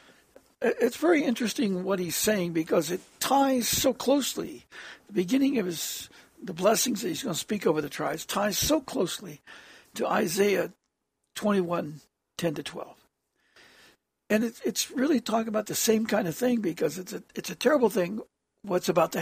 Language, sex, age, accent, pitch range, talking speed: English, male, 60-79, American, 185-255 Hz, 170 wpm